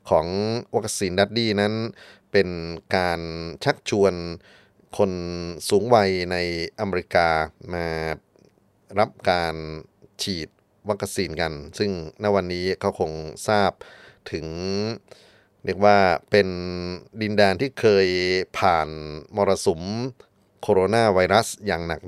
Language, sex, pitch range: Thai, male, 85-100 Hz